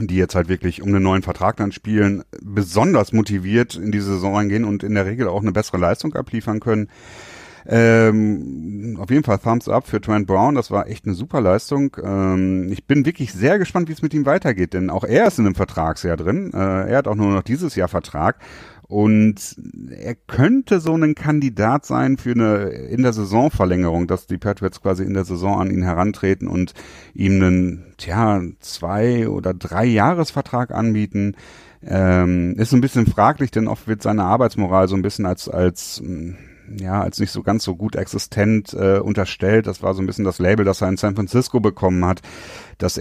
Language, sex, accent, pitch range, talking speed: German, male, German, 95-110 Hz, 195 wpm